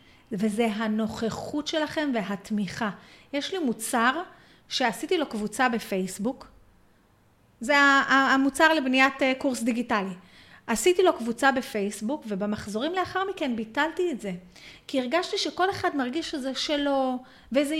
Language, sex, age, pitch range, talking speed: Hebrew, female, 30-49, 235-310 Hz, 115 wpm